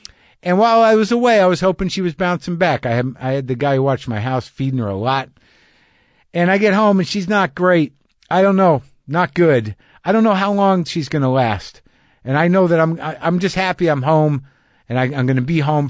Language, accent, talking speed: English, American, 240 wpm